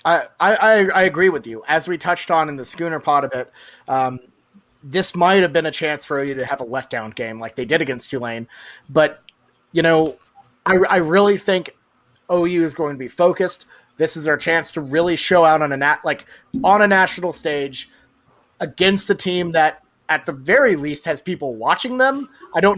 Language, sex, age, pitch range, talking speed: English, male, 30-49, 140-180 Hz, 205 wpm